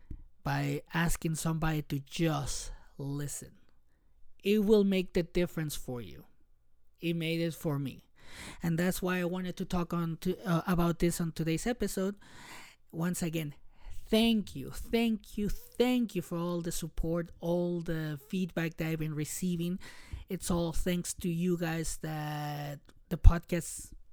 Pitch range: 155-185 Hz